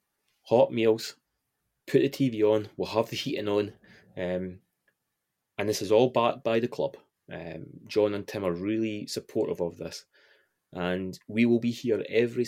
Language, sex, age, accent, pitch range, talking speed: English, male, 20-39, British, 95-115 Hz, 170 wpm